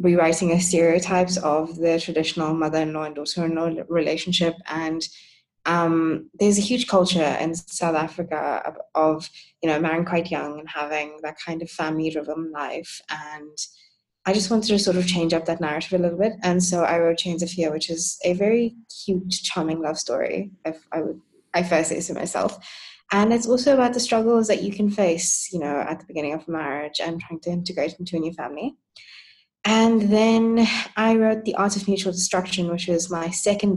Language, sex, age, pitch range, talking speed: English, female, 20-39, 160-185 Hz, 190 wpm